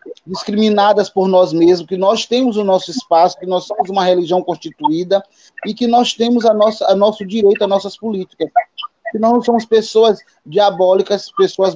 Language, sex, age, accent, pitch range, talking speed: Portuguese, male, 20-39, Brazilian, 175-235 Hz, 180 wpm